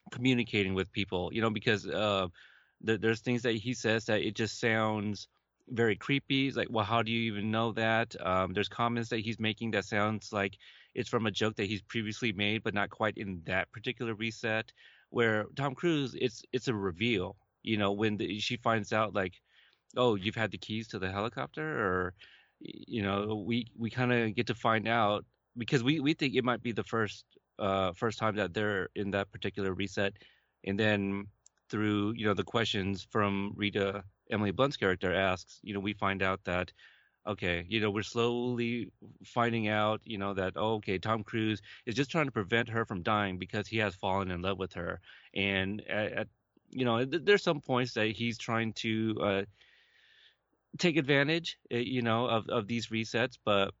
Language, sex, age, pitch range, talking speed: English, male, 30-49, 100-120 Hz, 195 wpm